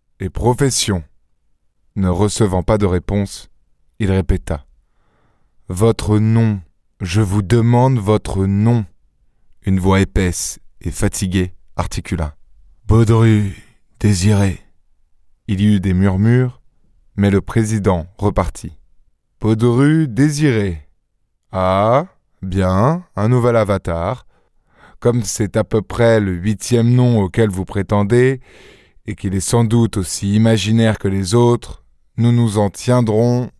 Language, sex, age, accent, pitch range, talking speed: French, male, 20-39, French, 95-120 Hz, 125 wpm